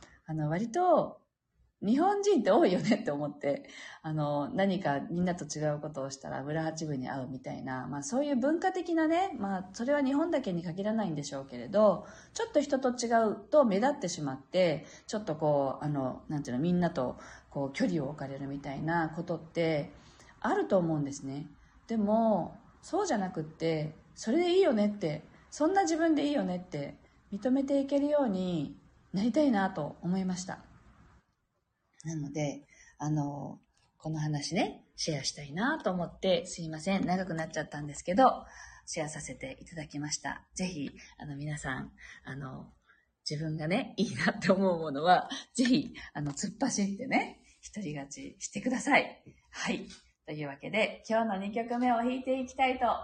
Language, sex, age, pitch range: Japanese, female, 40-59, 150-240 Hz